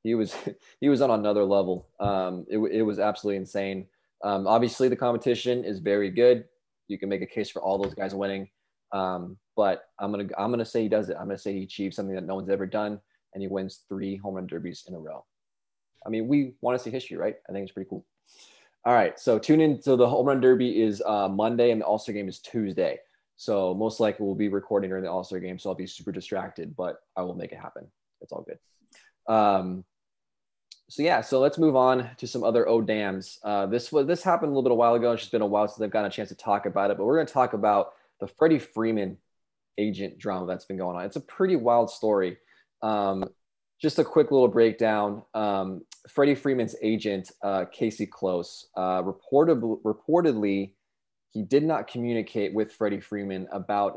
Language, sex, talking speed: English, male, 220 wpm